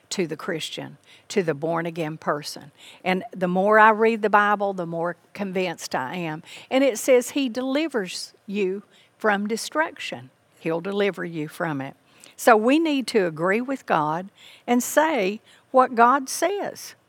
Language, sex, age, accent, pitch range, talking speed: English, female, 60-79, American, 180-245 Hz, 160 wpm